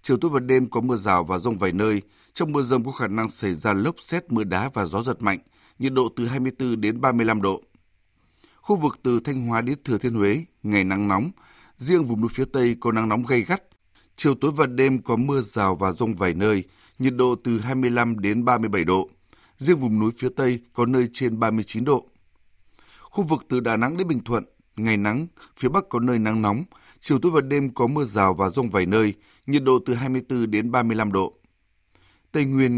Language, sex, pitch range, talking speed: Vietnamese, male, 105-130 Hz, 245 wpm